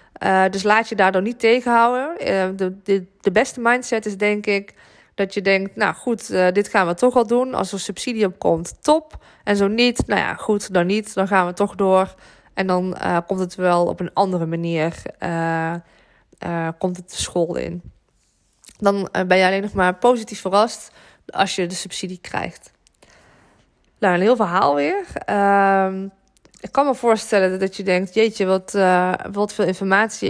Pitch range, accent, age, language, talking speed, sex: 185-220 Hz, Dutch, 20-39, Dutch, 195 wpm, female